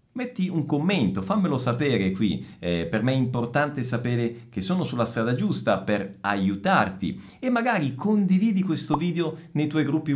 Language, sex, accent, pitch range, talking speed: Italian, male, native, 115-180 Hz, 160 wpm